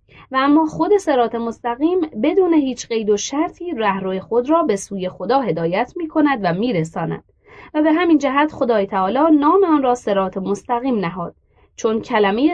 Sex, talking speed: female, 170 wpm